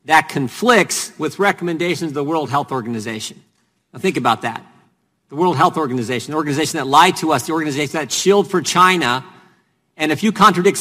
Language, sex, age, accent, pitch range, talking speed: English, male, 50-69, American, 155-185 Hz, 185 wpm